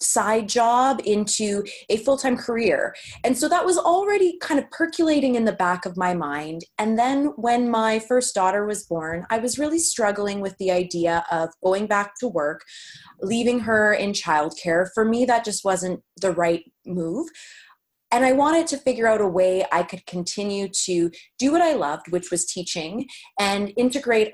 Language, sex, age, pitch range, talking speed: English, female, 20-39, 175-240 Hz, 180 wpm